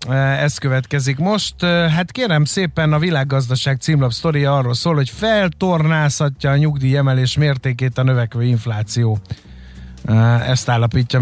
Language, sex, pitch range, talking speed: Hungarian, male, 125-150 Hz, 120 wpm